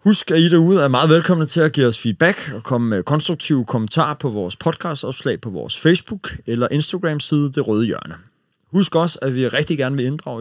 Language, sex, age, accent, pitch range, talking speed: Danish, male, 30-49, native, 110-155 Hz, 215 wpm